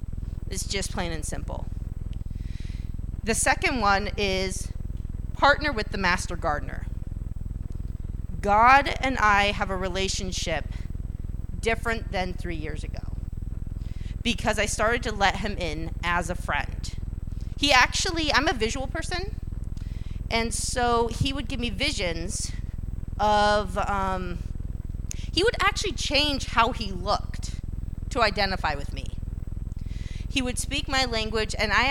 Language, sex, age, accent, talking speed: English, female, 40-59, American, 130 wpm